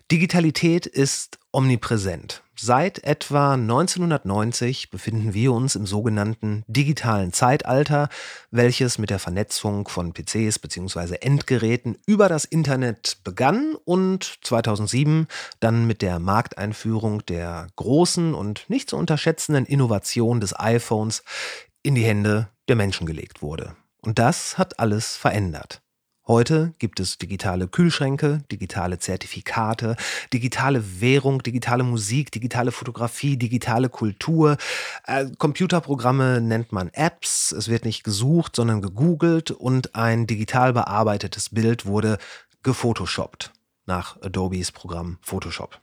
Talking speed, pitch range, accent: 115 wpm, 105-145 Hz, German